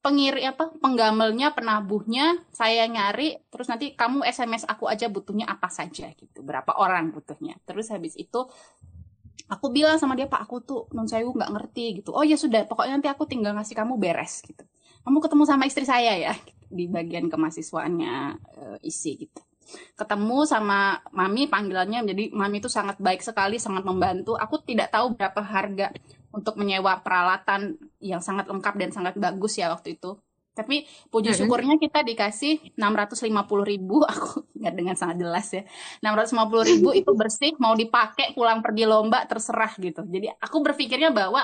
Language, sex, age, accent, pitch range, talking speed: Indonesian, female, 20-39, native, 195-270 Hz, 160 wpm